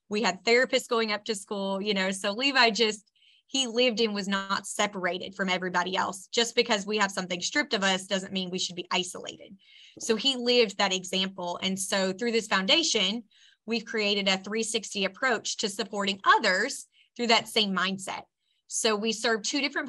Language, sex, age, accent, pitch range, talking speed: English, female, 20-39, American, 190-230 Hz, 185 wpm